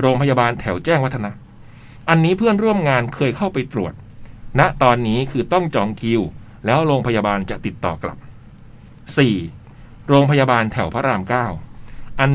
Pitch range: 110-140 Hz